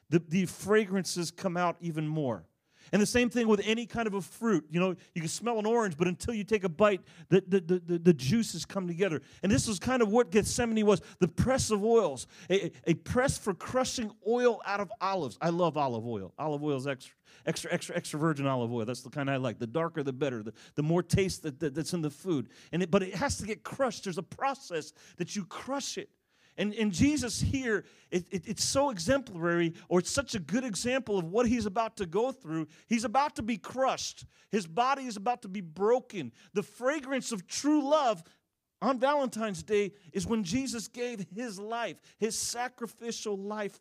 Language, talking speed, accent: English, 210 wpm, American